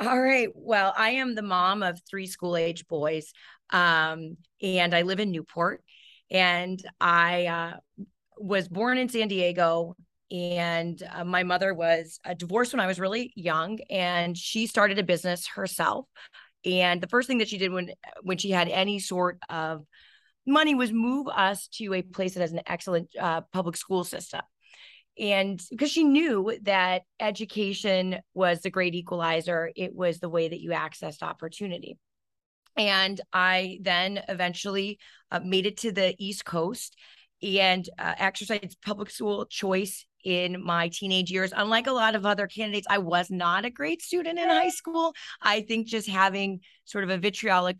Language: English